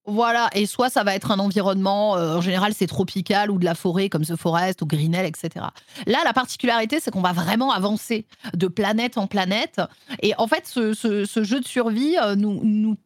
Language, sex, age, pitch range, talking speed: French, female, 30-49, 190-250 Hz, 215 wpm